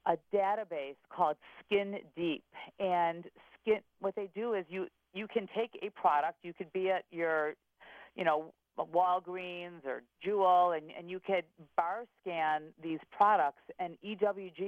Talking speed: 150 wpm